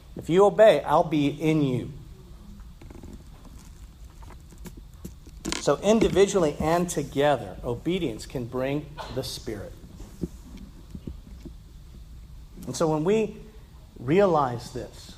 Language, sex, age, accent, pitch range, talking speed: English, male, 40-59, American, 115-175 Hz, 85 wpm